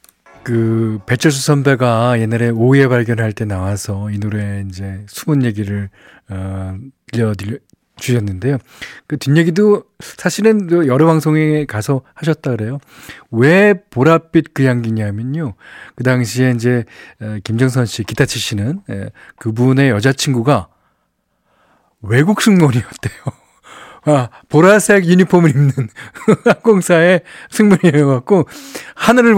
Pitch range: 110-150 Hz